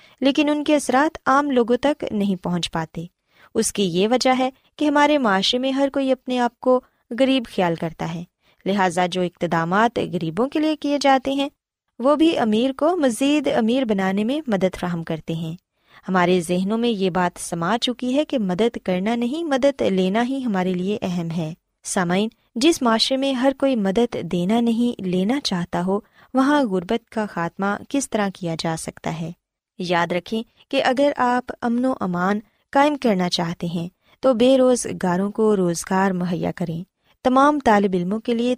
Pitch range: 180-260 Hz